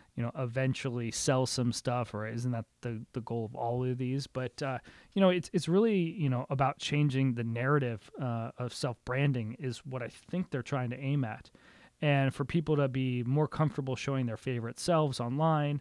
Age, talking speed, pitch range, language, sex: 30-49, 200 wpm, 125-150 Hz, English, male